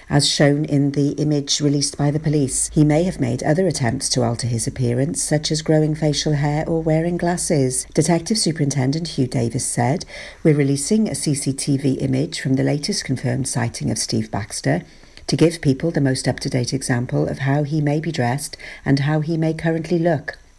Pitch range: 130-155 Hz